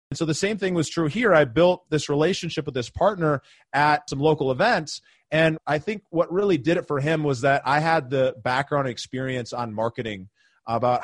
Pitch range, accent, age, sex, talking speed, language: 125-155 Hz, American, 30-49, male, 205 wpm, English